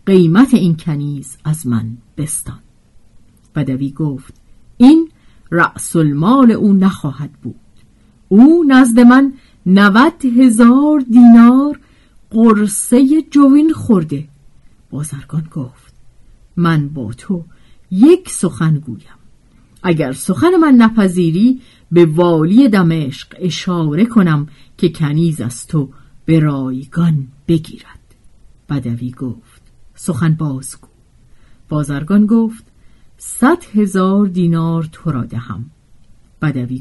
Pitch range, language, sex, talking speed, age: 140-215 Hz, Persian, female, 95 wpm, 50-69